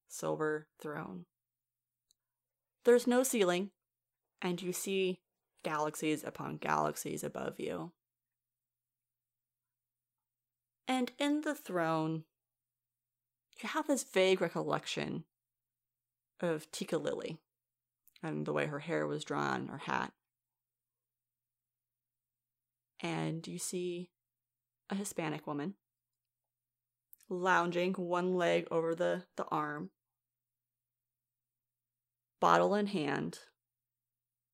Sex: female